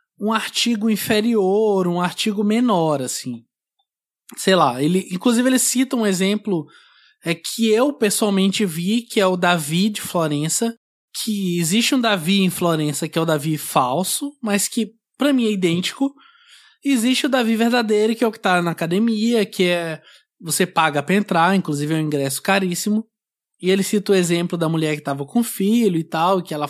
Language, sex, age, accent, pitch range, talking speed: Portuguese, male, 20-39, Brazilian, 170-230 Hz, 175 wpm